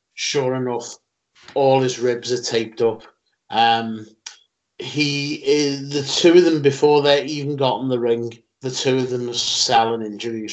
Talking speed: 165 wpm